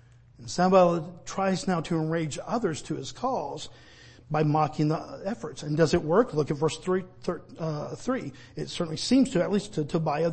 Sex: male